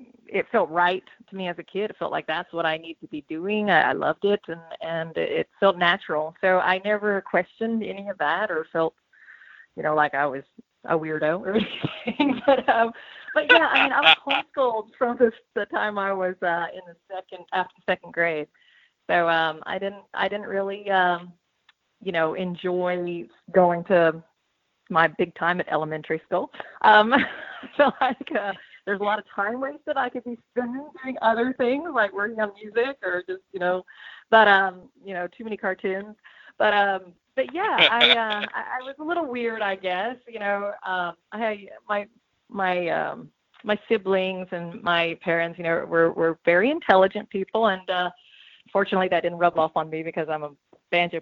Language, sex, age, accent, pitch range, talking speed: English, female, 30-49, American, 175-225 Hz, 195 wpm